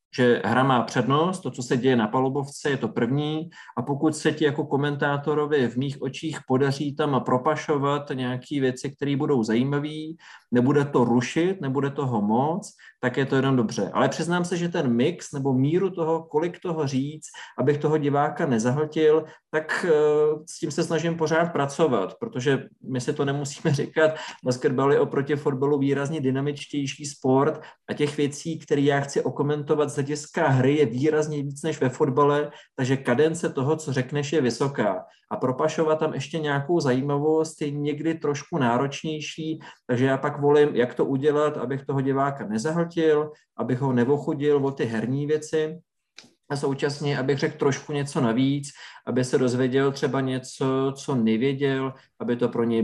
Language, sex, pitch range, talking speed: Slovak, male, 135-155 Hz, 165 wpm